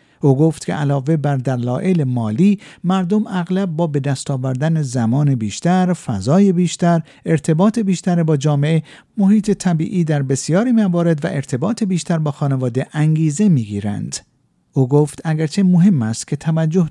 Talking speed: 135 wpm